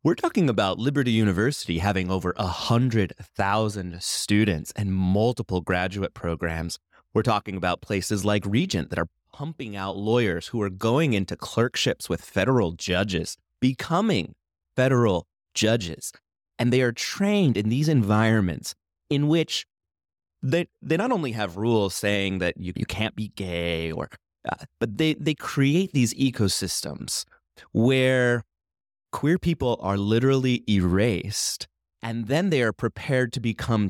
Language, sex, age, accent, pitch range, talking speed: English, male, 30-49, American, 90-130 Hz, 140 wpm